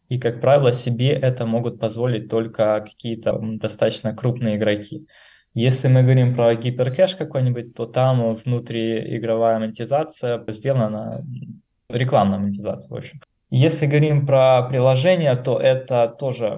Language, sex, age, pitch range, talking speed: Russian, male, 20-39, 110-125 Hz, 125 wpm